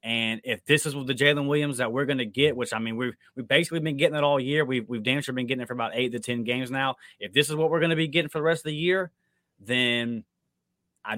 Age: 20-39